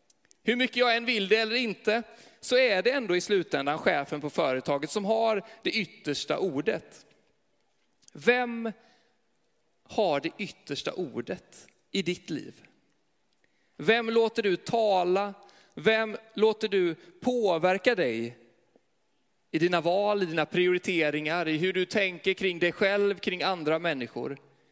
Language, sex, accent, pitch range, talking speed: Swedish, male, native, 175-220 Hz, 135 wpm